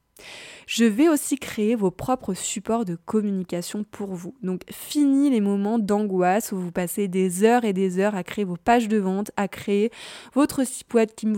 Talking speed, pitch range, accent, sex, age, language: 195 wpm, 200-255 Hz, French, female, 20-39, French